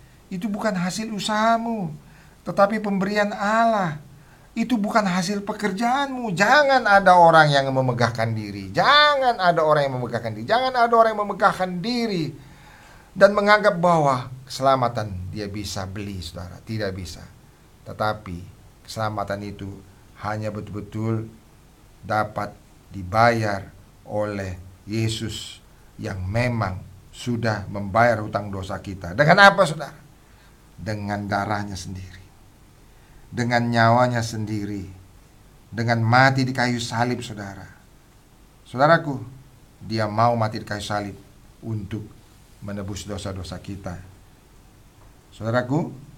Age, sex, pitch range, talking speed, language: 40-59, male, 100-140 Hz, 105 wpm, English